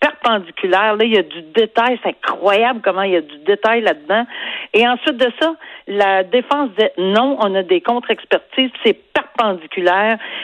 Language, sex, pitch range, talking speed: French, female, 180-240 Hz, 170 wpm